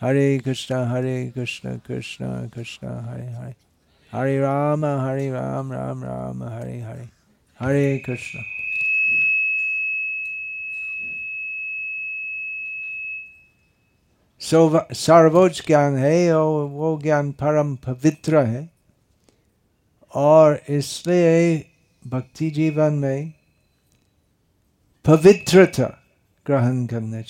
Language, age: Hindi, 60-79